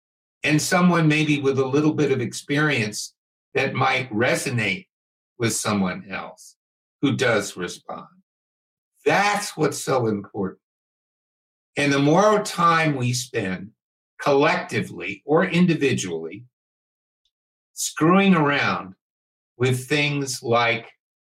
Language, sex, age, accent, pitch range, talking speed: English, male, 60-79, American, 115-150 Hz, 100 wpm